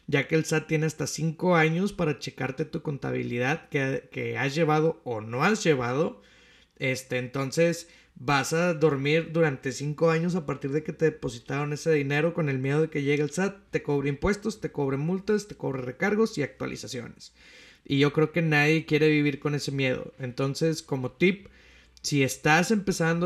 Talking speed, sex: 185 wpm, male